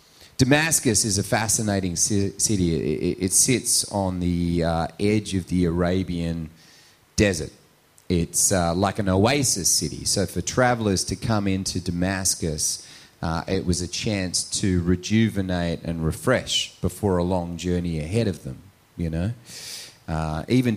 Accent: Australian